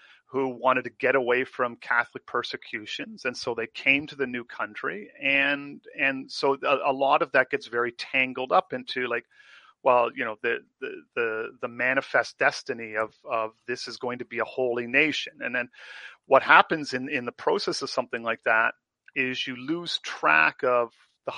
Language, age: English, 40-59